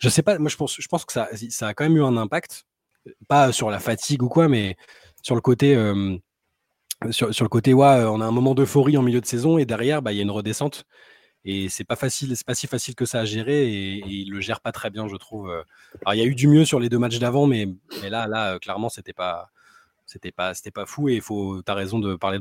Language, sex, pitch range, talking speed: French, male, 100-135 Hz, 280 wpm